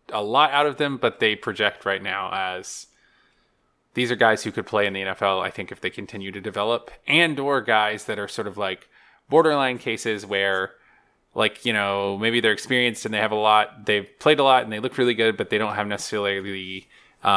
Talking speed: 220 wpm